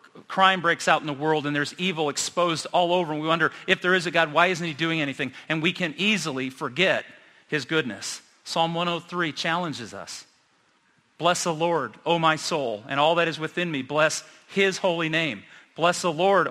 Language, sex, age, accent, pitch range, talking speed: English, male, 40-59, American, 150-180 Hz, 200 wpm